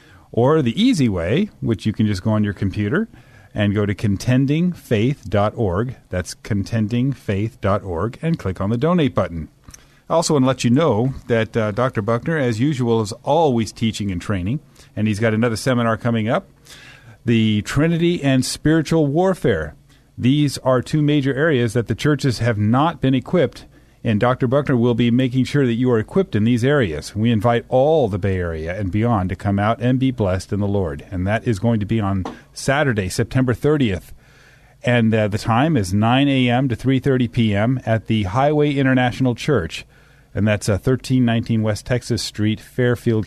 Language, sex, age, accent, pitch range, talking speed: English, male, 40-59, American, 105-130 Hz, 180 wpm